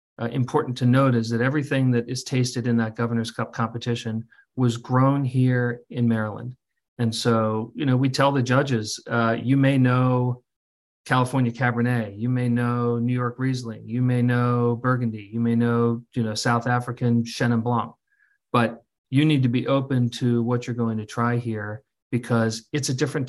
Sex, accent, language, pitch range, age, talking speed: male, American, English, 115-130 Hz, 40-59, 180 wpm